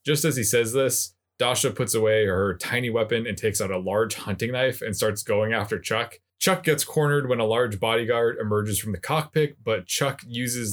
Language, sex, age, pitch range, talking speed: English, male, 20-39, 105-130 Hz, 205 wpm